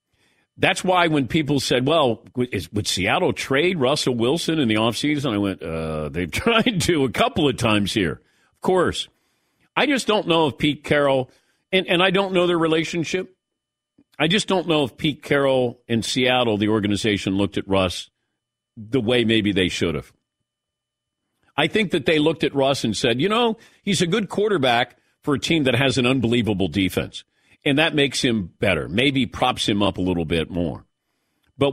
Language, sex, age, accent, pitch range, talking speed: English, male, 50-69, American, 100-155 Hz, 185 wpm